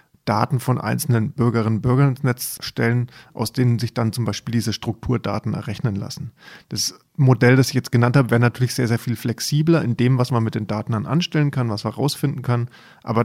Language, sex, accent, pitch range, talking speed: German, male, German, 110-135 Hz, 205 wpm